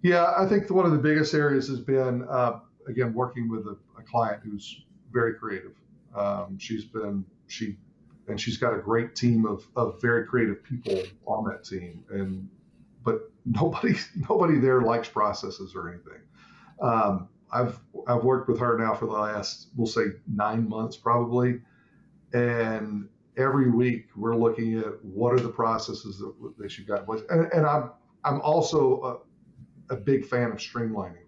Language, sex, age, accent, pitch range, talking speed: English, male, 50-69, American, 110-135 Hz, 165 wpm